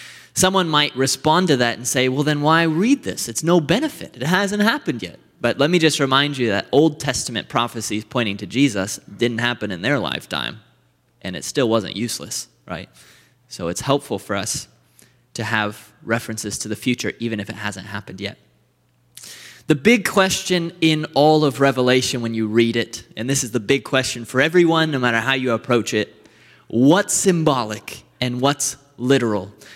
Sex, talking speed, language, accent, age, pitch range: male, 180 wpm, English, American, 20-39, 110-150 Hz